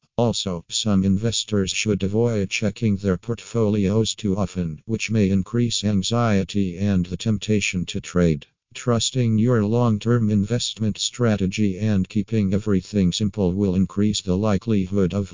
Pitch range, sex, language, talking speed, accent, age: 95-110 Hz, male, English, 130 wpm, American, 50-69